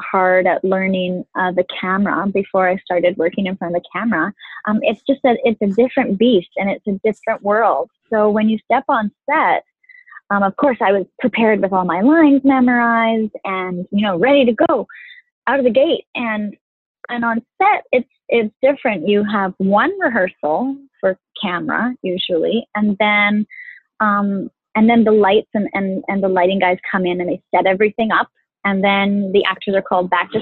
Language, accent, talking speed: English, American, 190 wpm